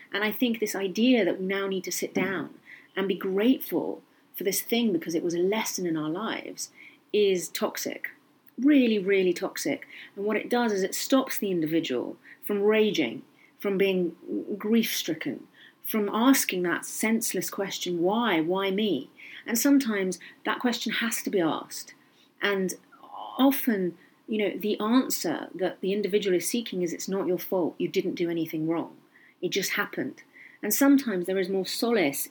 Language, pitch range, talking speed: English, 180-255 Hz, 170 wpm